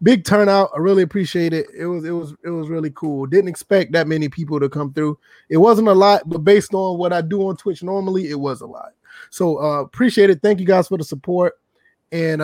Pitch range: 150-175 Hz